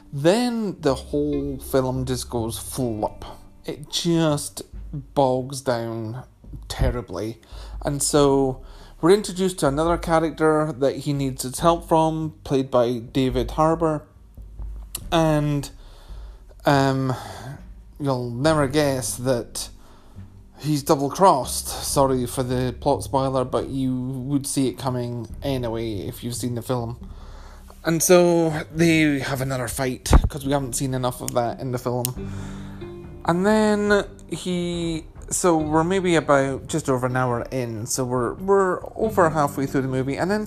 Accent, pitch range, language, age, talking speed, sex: British, 120-155 Hz, English, 30-49, 140 wpm, male